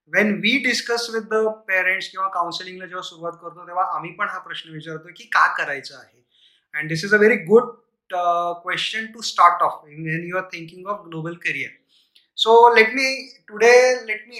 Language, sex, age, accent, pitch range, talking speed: Marathi, male, 20-39, native, 170-210 Hz, 180 wpm